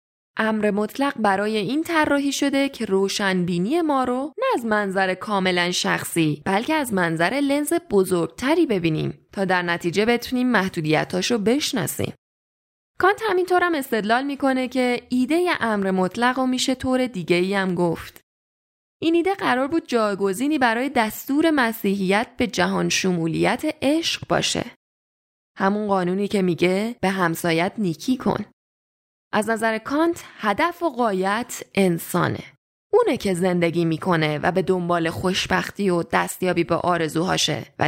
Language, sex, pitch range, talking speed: Persian, female, 185-275 Hz, 135 wpm